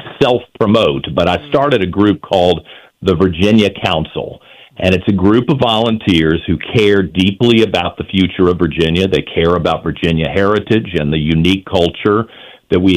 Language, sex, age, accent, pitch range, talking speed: English, male, 50-69, American, 85-110 Hz, 160 wpm